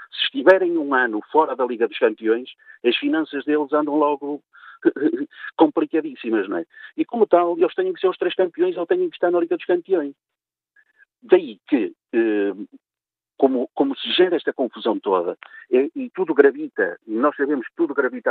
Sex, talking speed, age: male, 175 wpm, 50-69